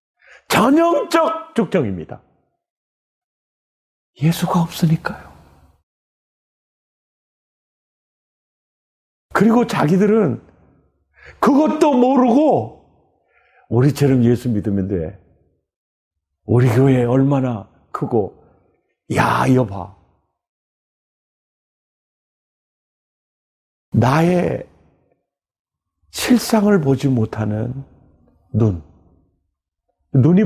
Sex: male